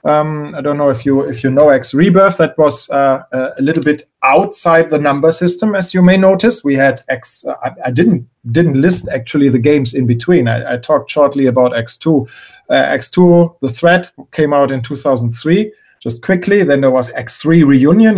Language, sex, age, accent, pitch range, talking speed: English, male, 40-59, German, 135-175 Hz, 195 wpm